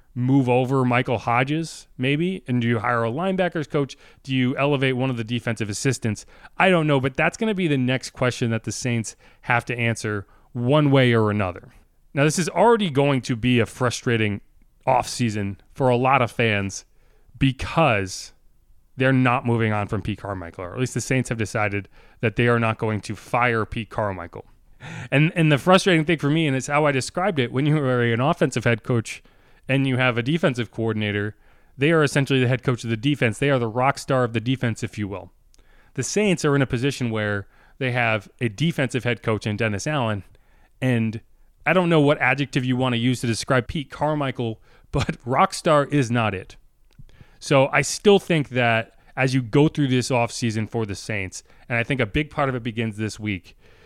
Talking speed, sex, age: 210 wpm, male, 30-49